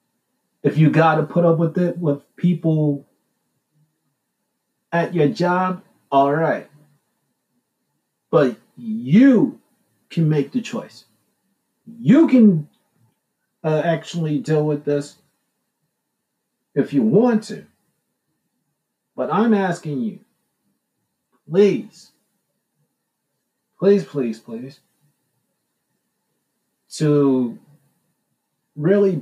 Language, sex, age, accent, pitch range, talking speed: English, male, 40-59, American, 150-200 Hz, 85 wpm